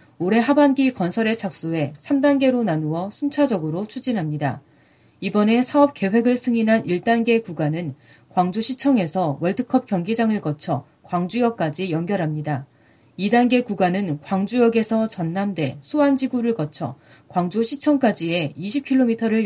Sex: female